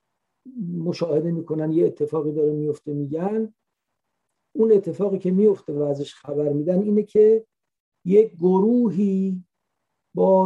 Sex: male